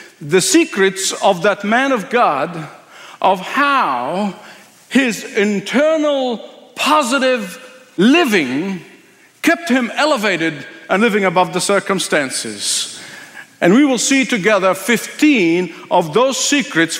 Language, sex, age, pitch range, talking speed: English, male, 50-69, 195-265 Hz, 105 wpm